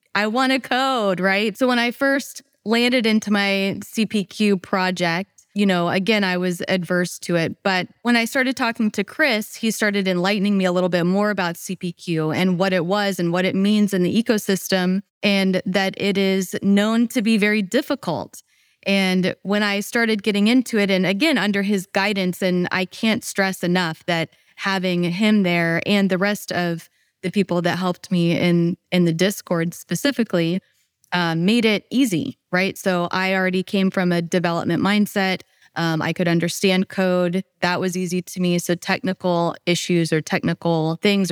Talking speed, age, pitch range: 180 wpm, 20-39, 175-205 Hz